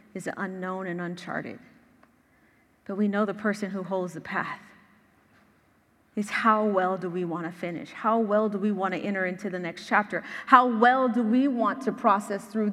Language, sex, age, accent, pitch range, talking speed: English, female, 30-49, American, 185-225 Hz, 190 wpm